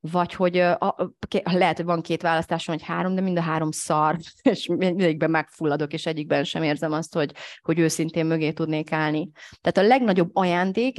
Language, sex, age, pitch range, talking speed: Hungarian, female, 30-49, 160-185 Hz, 175 wpm